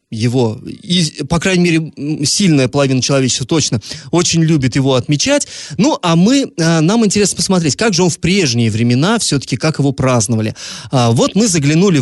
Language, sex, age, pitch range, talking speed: Russian, male, 20-39, 135-185 Hz, 160 wpm